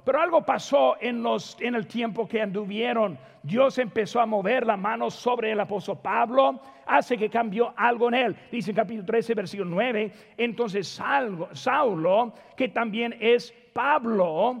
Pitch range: 205-255 Hz